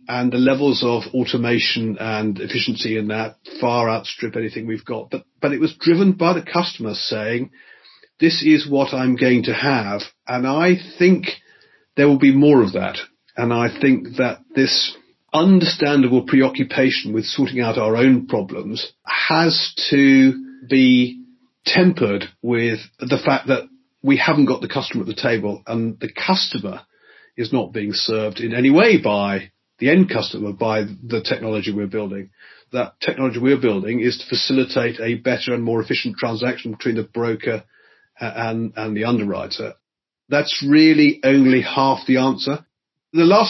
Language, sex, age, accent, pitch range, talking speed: English, male, 40-59, British, 115-160 Hz, 160 wpm